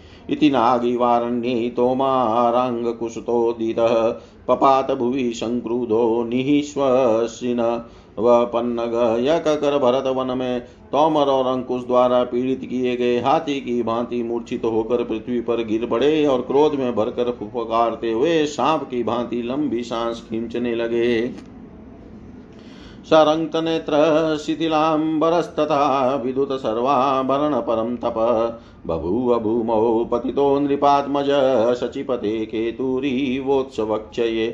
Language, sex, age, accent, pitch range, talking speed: Hindi, male, 50-69, native, 120-135 Hz, 75 wpm